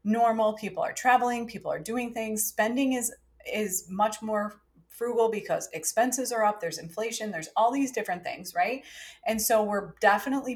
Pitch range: 190-250 Hz